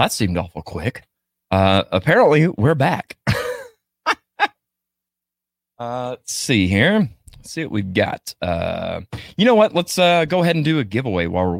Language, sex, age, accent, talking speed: English, male, 30-49, American, 160 wpm